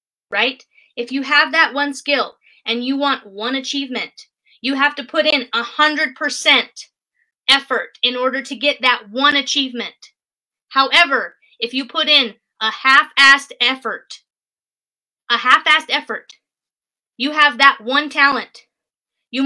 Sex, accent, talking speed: female, American, 140 wpm